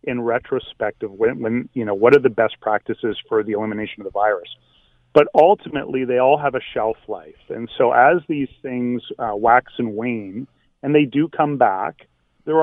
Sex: male